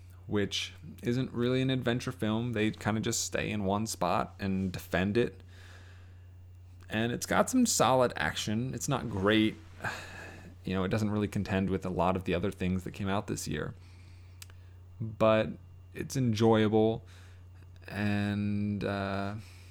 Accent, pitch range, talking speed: American, 90-115 Hz, 145 wpm